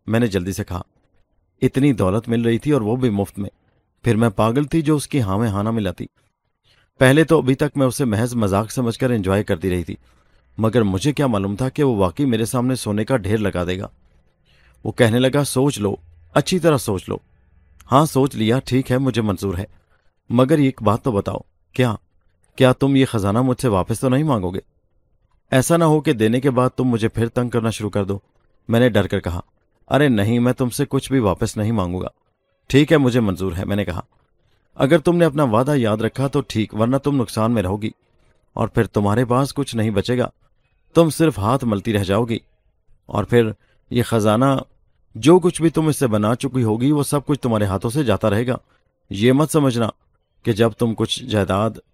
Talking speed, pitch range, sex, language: 215 wpm, 100-130 Hz, male, Urdu